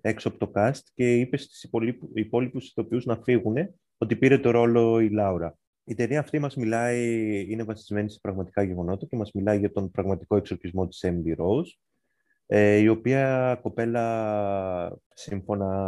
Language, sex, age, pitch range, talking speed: Greek, male, 20-39, 95-125 Hz, 155 wpm